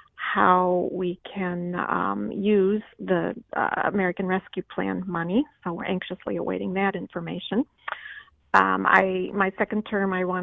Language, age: English, 40-59